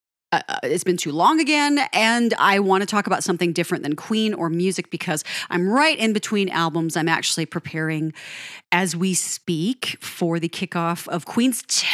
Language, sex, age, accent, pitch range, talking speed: English, female, 30-49, American, 160-215 Hz, 175 wpm